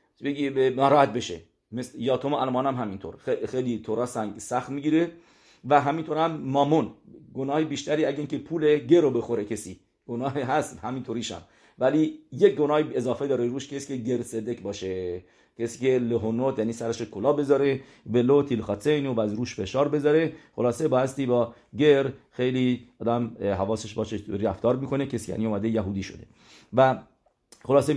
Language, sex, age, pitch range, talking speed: English, male, 50-69, 115-140 Hz, 155 wpm